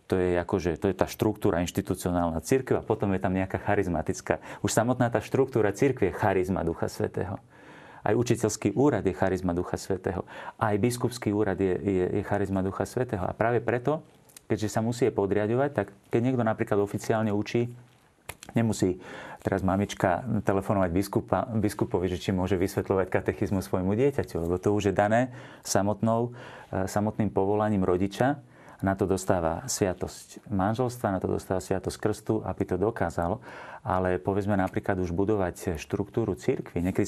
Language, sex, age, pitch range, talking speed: Slovak, male, 40-59, 95-110 Hz, 155 wpm